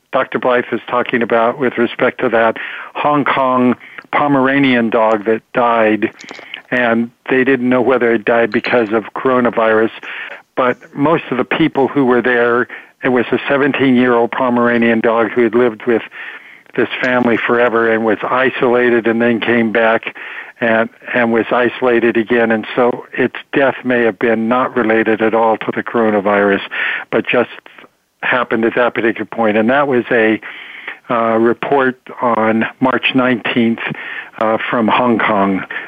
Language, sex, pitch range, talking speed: English, male, 110-125 Hz, 155 wpm